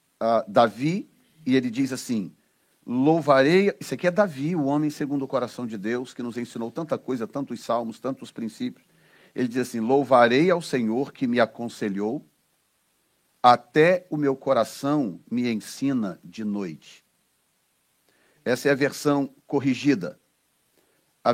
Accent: Brazilian